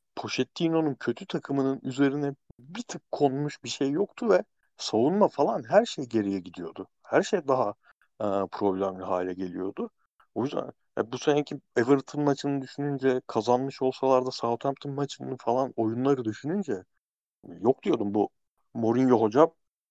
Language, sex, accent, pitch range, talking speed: Turkish, male, native, 105-130 Hz, 135 wpm